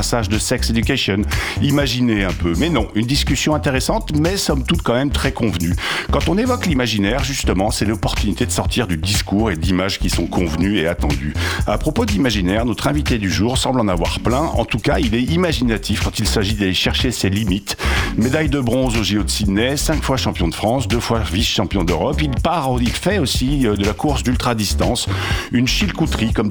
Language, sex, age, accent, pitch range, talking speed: French, male, 60-79, French, 95-120 Hz, 205 wpm